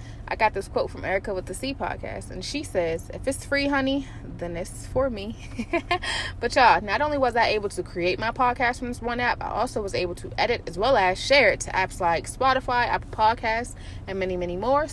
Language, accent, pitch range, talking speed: English, American, 195-275 Hz, 230 wpm